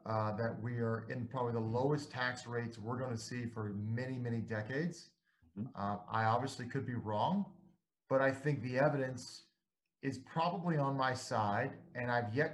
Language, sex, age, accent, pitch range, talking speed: English, male, 30-49, American, 115-145 Hz, 175 wpm